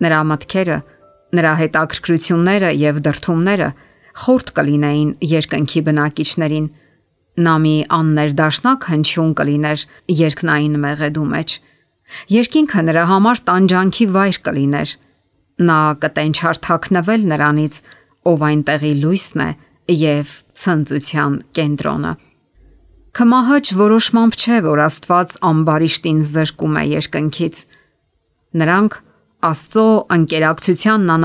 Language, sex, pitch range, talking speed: English, female, 150-185 Hz, 65 wpm